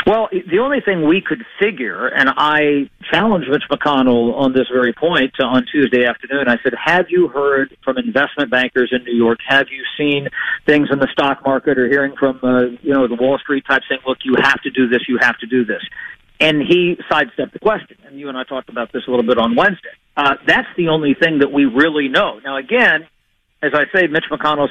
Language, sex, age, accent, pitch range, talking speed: English, male, 50-69, American, 130-150 Hz, 225 wpm